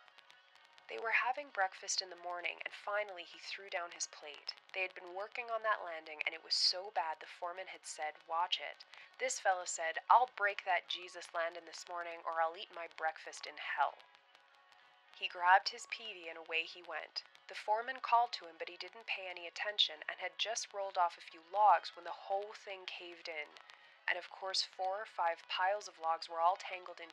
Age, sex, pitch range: 20-39, female, 165-190 Hz